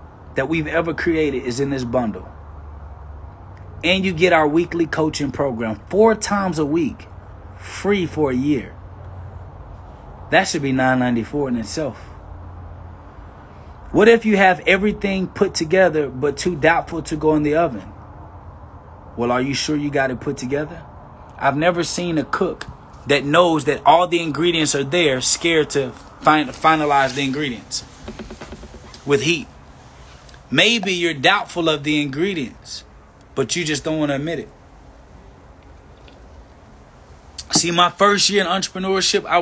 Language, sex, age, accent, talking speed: English, male, 20-39, American, 145 wpm